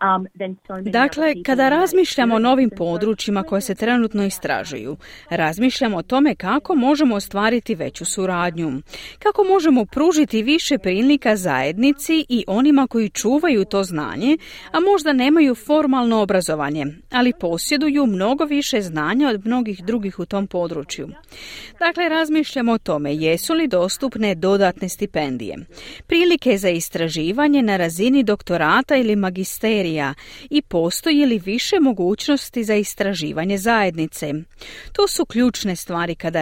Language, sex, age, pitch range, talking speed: Croatian, female, 40-59, 180-275 Hz, 125 wpm